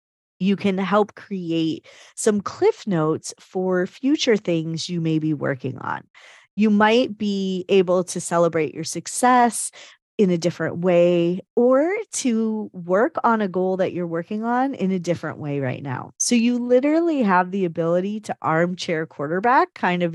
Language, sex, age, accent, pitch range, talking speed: English, female, 30-49, American, 170-225 Hz, 160 wpm